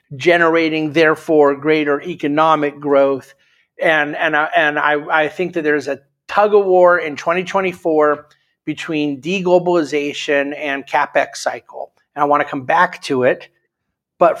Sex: male